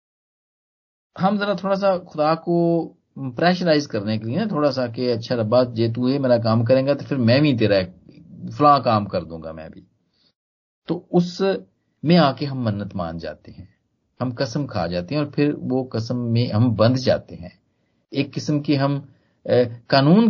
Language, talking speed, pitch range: Hindi, 180 wpm, 110-155 Hz